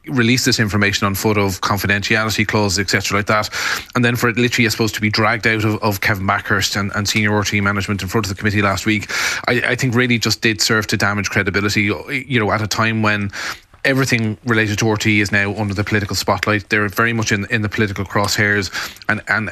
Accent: Irish